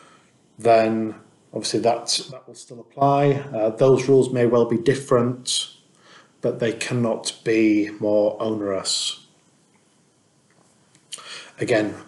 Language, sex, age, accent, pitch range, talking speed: English, male, 40-59, British, 110-125 Hz, 105 wpm